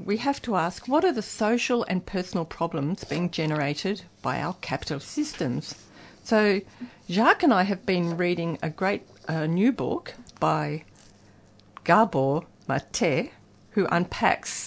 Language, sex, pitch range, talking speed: English, female, 165-220 Hz, 140 wpm